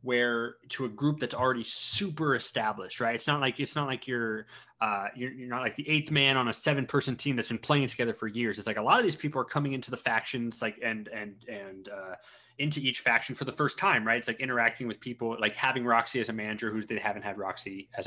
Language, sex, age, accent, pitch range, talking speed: English, male, 20-39, American, 110-130 Hz, 255 wpm